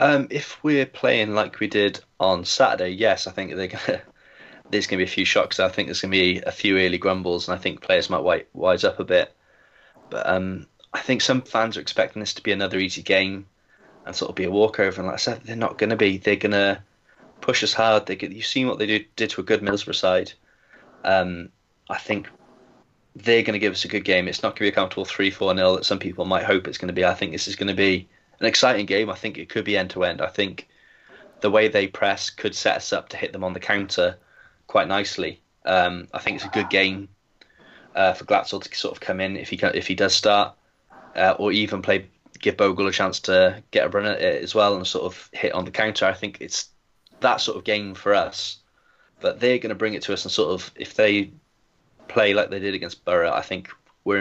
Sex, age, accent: male, 20-39, British